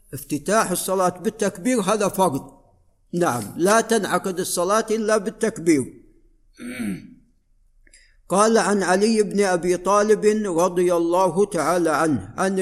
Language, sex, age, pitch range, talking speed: Arabic, male, 60-79, 160-210 Hz, 105 wpm